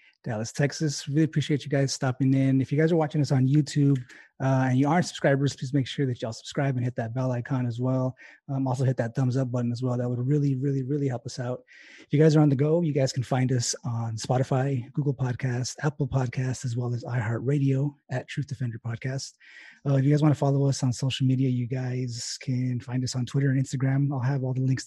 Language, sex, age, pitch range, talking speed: English, male, 20-39, 125-145 Hz, 245 wpm